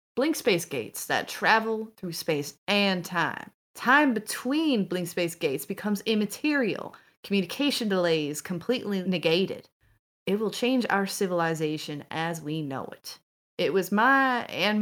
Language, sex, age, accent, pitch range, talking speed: English, female, 30-49, American, 160-205 Hz, 135 wpm